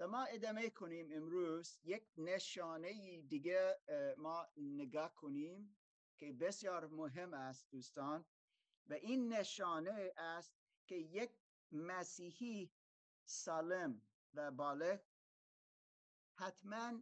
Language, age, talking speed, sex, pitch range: Persian, 50-69, 95 wpm, male, 165-235 Hz